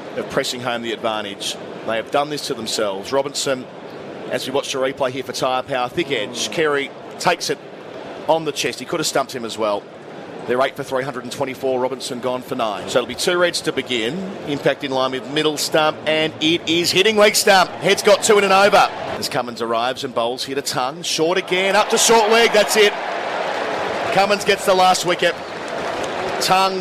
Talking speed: 215 wpm